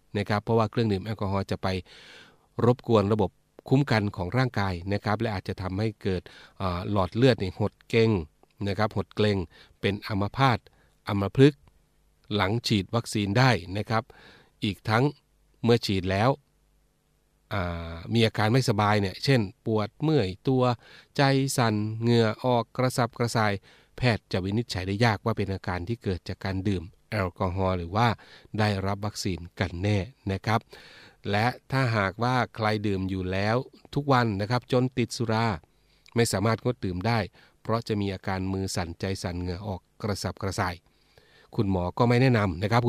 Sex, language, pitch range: male, Thai, 95-115 Hz